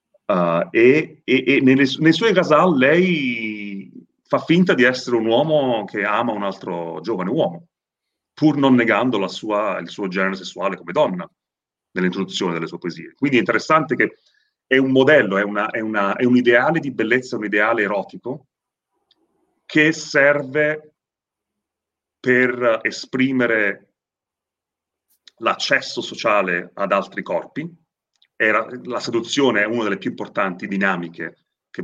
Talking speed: 130 wpm